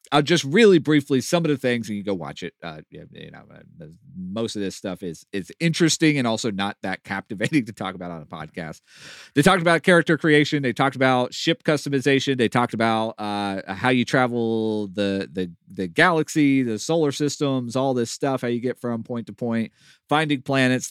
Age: 30-49